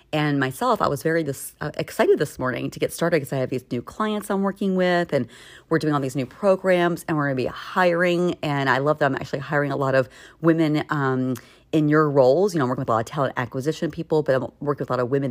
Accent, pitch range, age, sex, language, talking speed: American, 130-165 Hz, 40-59, female, English, 265 wpm